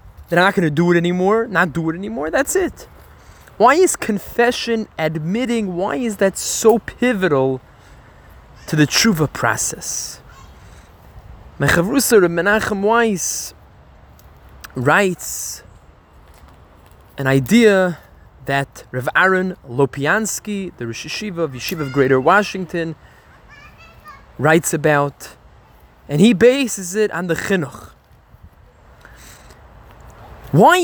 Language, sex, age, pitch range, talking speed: English, male, 20-39, 130-220 Hz, 105 wpm